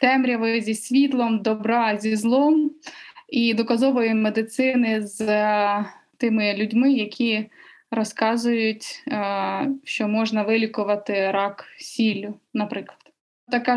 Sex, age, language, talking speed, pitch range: female, 20-39, Ukrainian, 100 wpm, 210-245 Hz